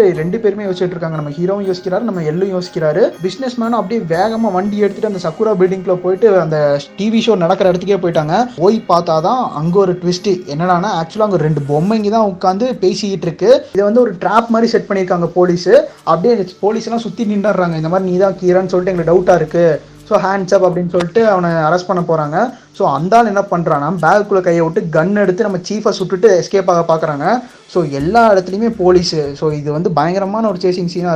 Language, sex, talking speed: Tamil, male, 185 wpm